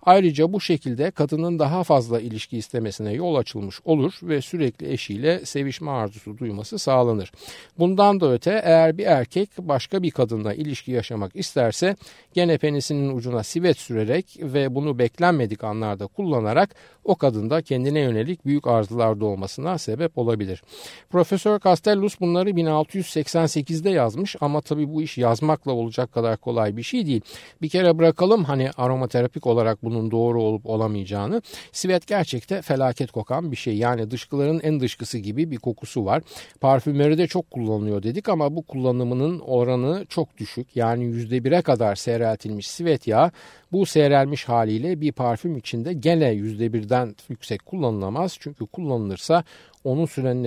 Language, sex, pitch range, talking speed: Turkish, male, 115-165 Hz, 145 wpm